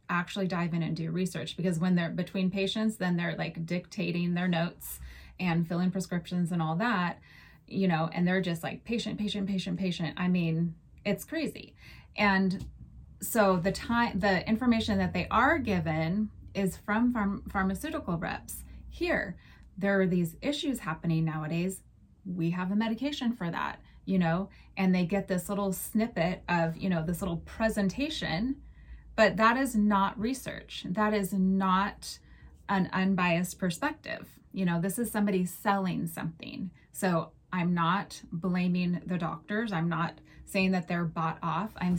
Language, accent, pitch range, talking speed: English, American, 175-210 Hz, 155 wpm